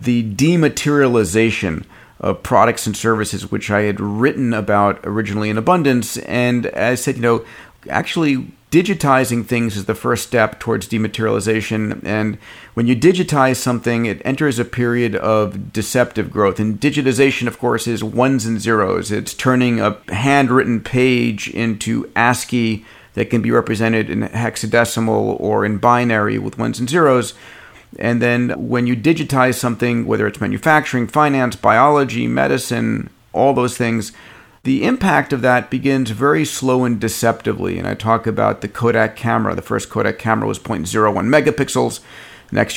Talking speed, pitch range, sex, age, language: 150 wpm, 110-130 Hz, male, 40-59, English